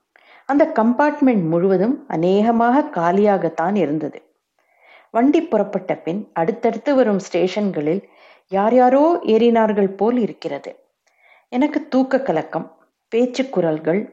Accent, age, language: native, 50-69, Tamil